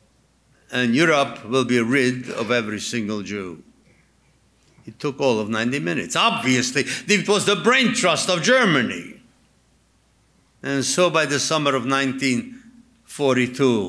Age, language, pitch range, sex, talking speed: 50-69, English, 130-180 Hz, male, 130 wpm